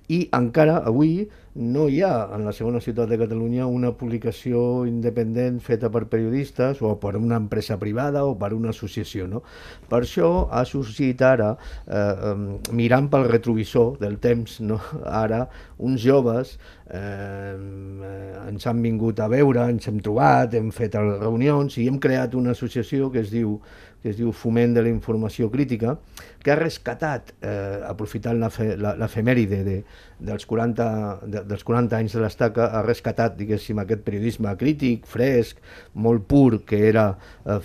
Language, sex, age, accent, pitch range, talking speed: Spanish, male, 50-69, Spanish, 105-120 Hz, 160 wpm